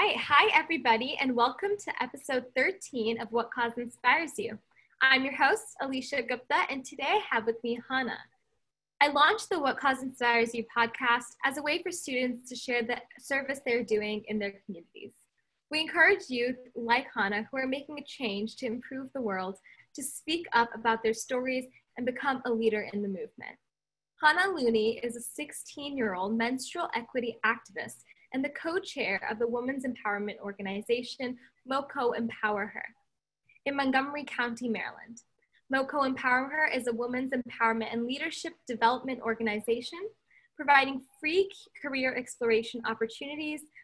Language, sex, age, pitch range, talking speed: English, female, 10-29, 230-280 Hz, 155 wpm